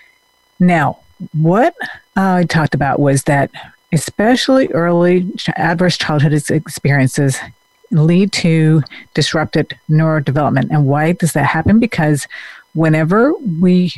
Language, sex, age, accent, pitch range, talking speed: English, female, 50-69, American, 145-170 Hz, 105 wpm